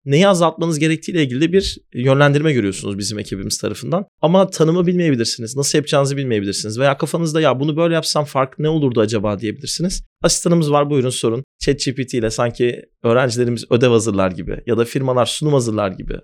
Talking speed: 165 wpm